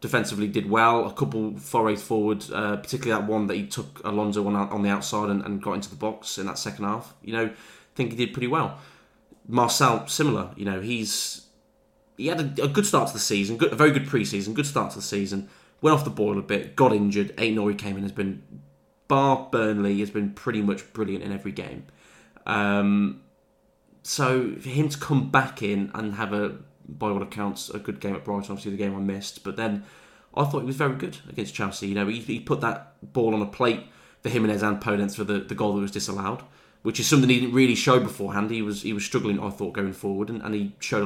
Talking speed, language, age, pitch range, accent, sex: 230 wpm, English, 20-39, 100-120 Hz, British, male